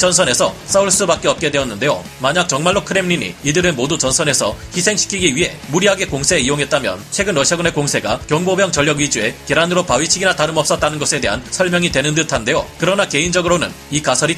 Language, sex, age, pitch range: Korean, male, 30-49, 145-180 Hz